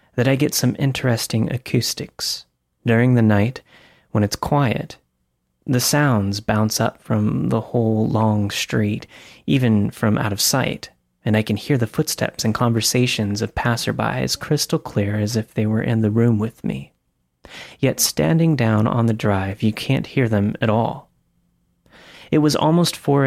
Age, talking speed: 30-49, 160 wpm